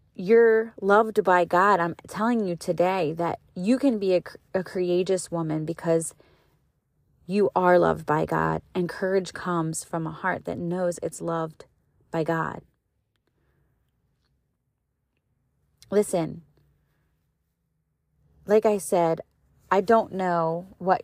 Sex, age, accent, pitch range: female, 30-49, American, 155-185 Hz